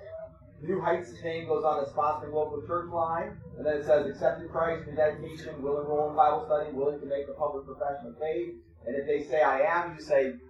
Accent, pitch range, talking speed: American, 135-170 Hz, 230 wpm